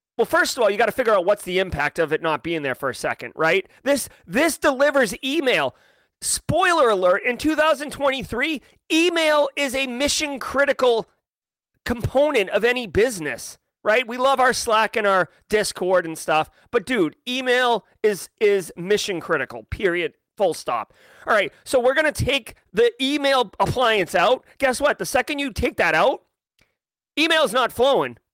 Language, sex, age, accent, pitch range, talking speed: English, male, 30-49, American, 190-270 Hz, 165 wpm